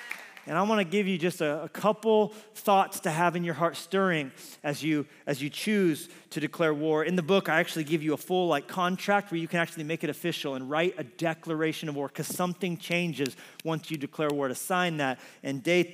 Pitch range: 150-185 Hz